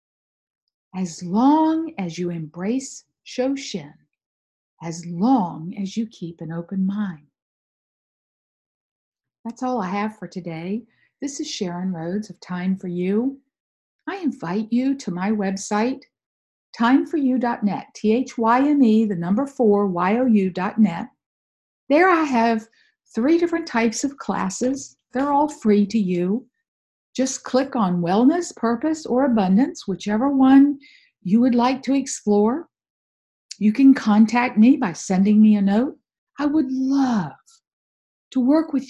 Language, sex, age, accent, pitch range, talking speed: English, female, 50-69, American, 205-275 Hz, 125 wpm